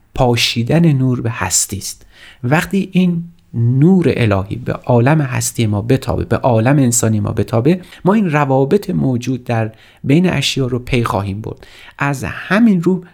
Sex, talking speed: male, 150 wpm